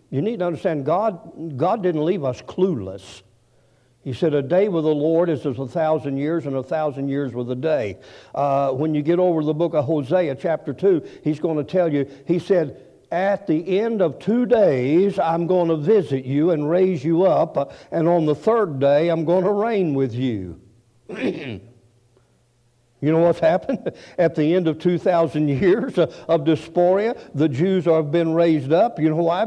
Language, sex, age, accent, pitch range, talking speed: English, male, 60-79, American, 135-180 Hz, 190 wpm